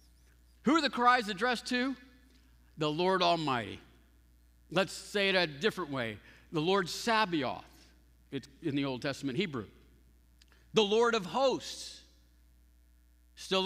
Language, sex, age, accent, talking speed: English, male, 50-69, American, 125 wpm